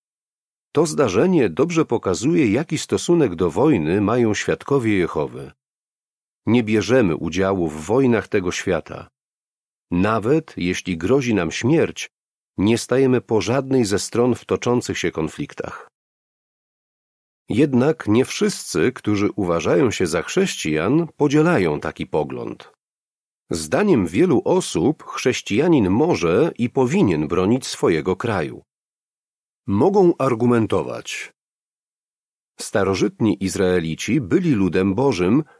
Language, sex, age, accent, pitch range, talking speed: Polish, male, 40-59, native, 95-130 Hz, 105 wpm